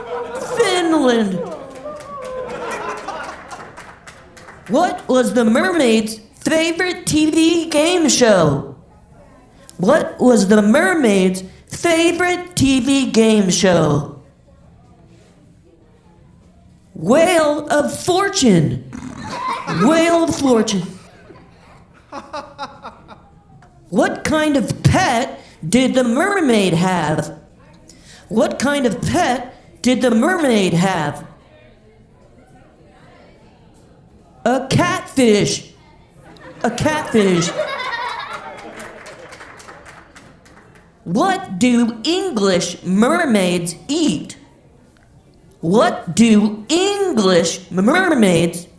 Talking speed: 65 wpm